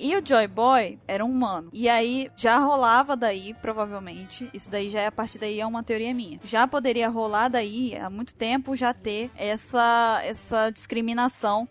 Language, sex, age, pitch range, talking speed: Portuguese, female, 10-29, 215-260 Hz, 185 wpm